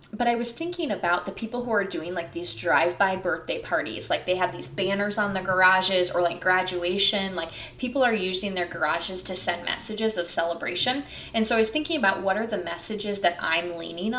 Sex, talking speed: female, 210 wpm